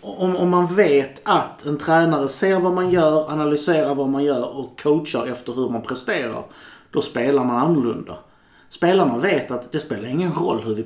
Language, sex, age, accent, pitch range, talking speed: Swedish, male, 30-49, native, 120-155 Hz, 190 wpm